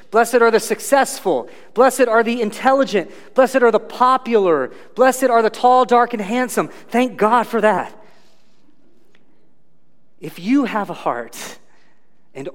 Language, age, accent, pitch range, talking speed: English, 30-49, American, 180-240 Hz, 140 wpm